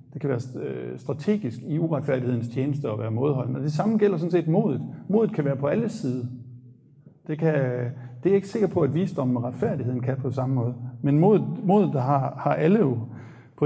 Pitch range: 130-165 Hz